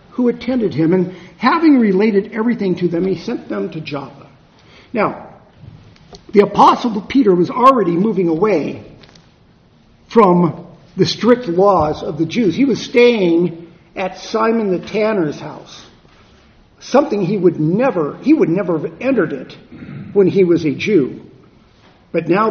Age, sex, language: 50-69, male, English